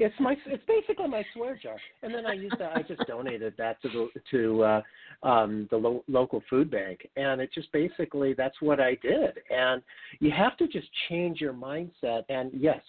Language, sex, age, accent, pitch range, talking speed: English, male, 50-69, American, 110-150 Hz, 185 wpm